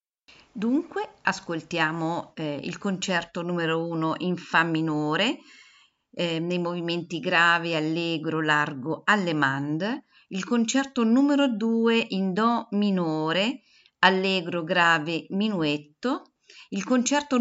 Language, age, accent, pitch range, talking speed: Italian, 50-69, native, 165-230 Hz, 105 wpm